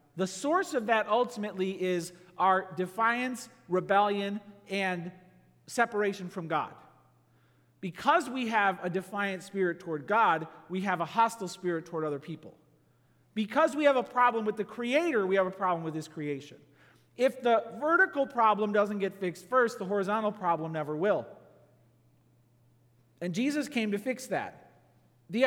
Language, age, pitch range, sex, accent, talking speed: English, 40-59, 160-215 Hz, male, American, 150 wpm